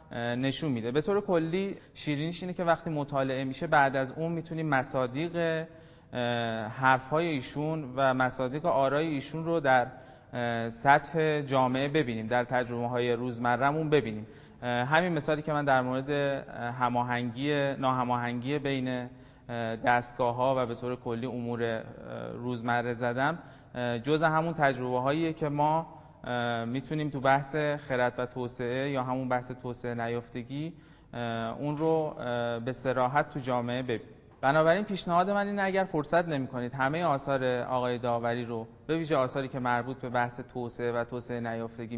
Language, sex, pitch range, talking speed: English, male, 120-150 Hz, 145 wpm